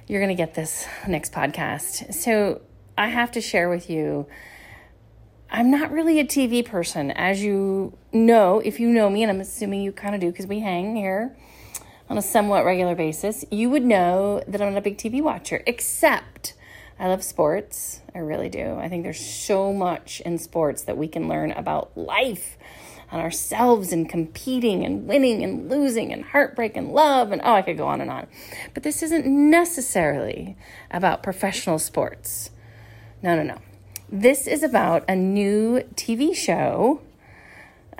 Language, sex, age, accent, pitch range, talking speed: English, female, 30-49, American, 175-245 Hz, 175 wpm